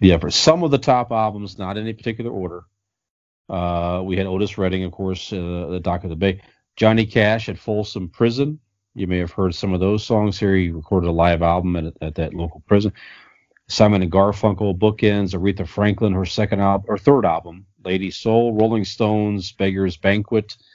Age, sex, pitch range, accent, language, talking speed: 40-59, male, 90-105 Hz, American, English, 195 wpm